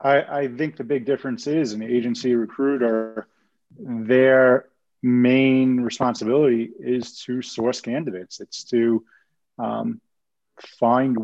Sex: male